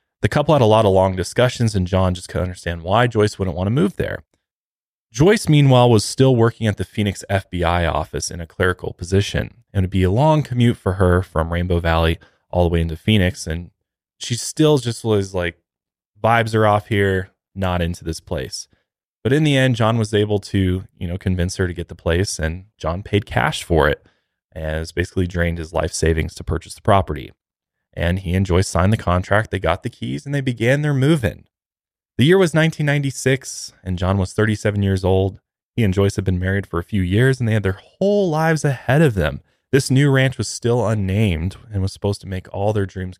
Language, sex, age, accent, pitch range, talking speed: English, male, 20-39, American, 90-120 Hz, 220 wpm